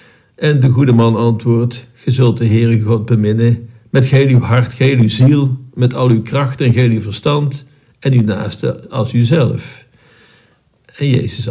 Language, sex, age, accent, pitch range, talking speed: Dutch, male, 50-69, Dutch, 110-130 Hz, 170 wpm